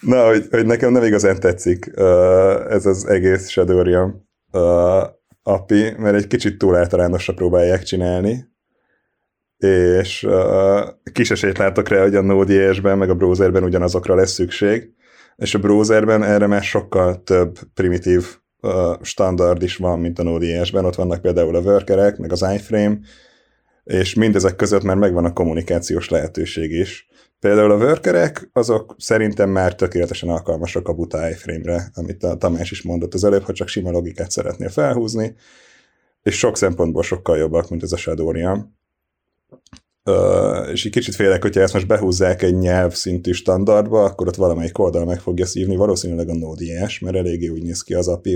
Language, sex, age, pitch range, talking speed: Hungarian, male, 30-49, 90-100 Hz, 155 wpm